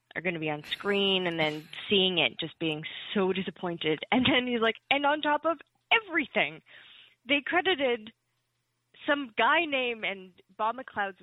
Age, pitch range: 20-39, 155-210 Hz